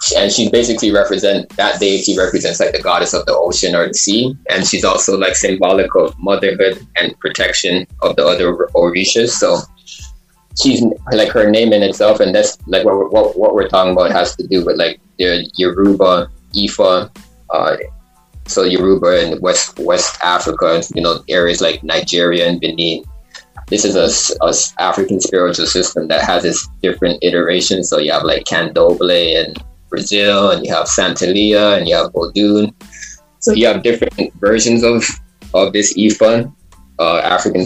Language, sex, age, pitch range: English, male, 20-39, 90-115 Hz